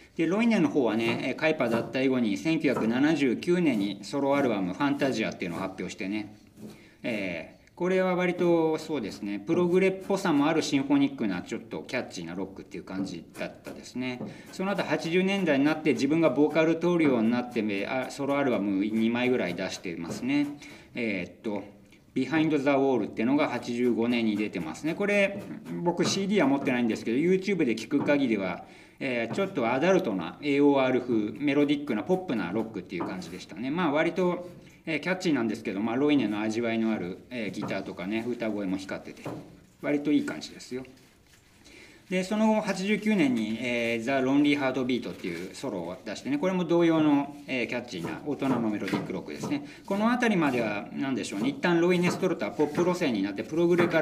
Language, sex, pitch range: Japanese, male, 115-175 Hz